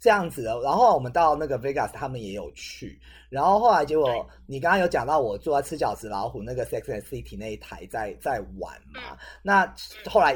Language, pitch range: Chinese, 110-185 Hz